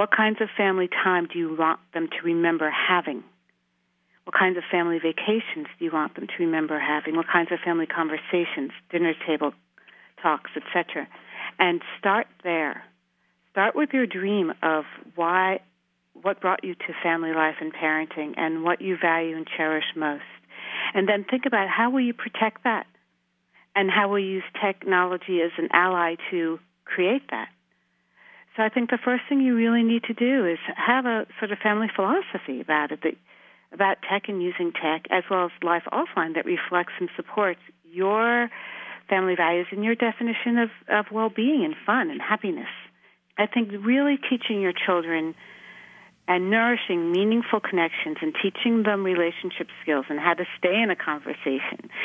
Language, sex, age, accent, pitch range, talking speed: English, female, 50-69, American, 165-220 Hz, 170 wpm